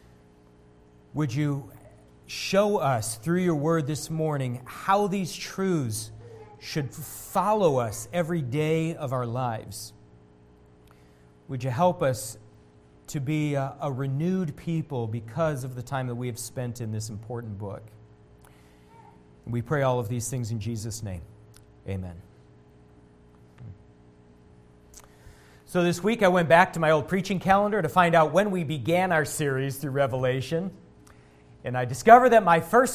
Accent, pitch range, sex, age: American, 105-170 Hz, male, 40-59